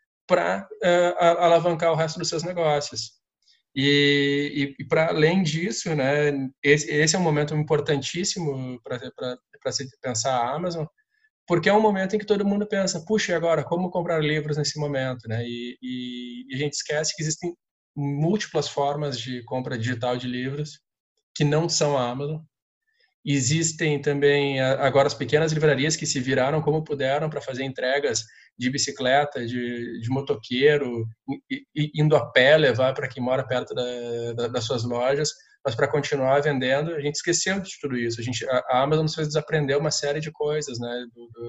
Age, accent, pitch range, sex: 20-39, Brazilian, 130-160 Hz, male